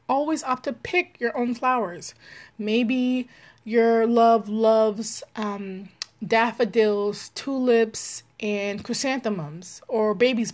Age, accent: 20-39, American